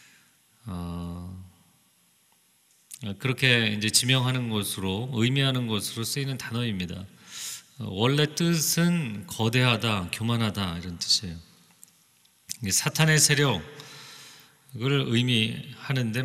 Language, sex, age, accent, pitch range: Korean, male, 40-59, native, 105-150 Hz